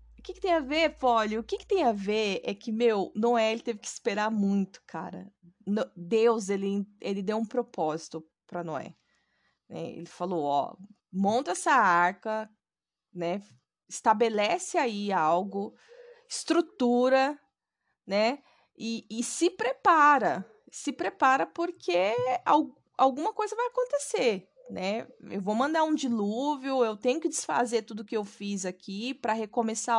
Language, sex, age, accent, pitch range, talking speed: Portuguese, female, 20-39, Brazilian, 200-280 Hz, 145 wpm